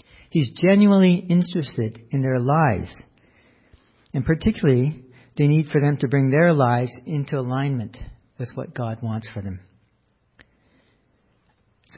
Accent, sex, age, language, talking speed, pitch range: American, male, 50-69, English, 125 wpm, 120-155 Hz